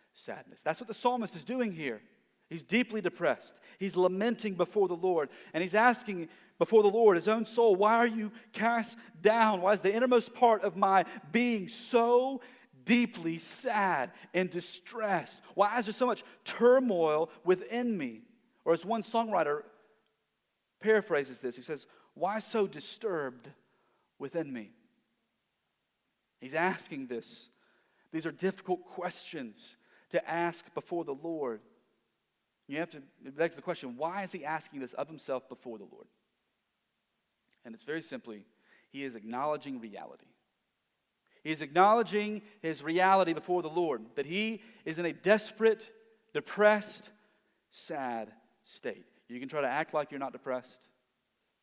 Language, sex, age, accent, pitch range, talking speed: English, male, 40-59, American, 150-220 Hz, 150 wpm